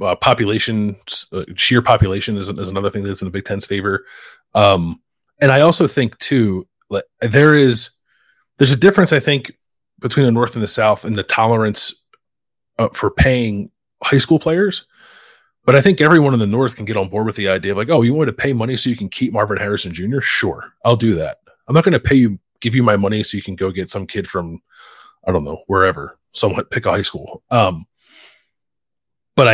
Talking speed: 215 wpm